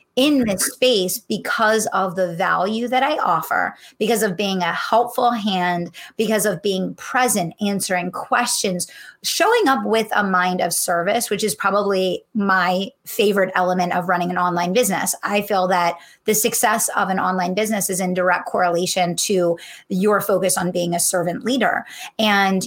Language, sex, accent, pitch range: English, female, American, 185-225 Hz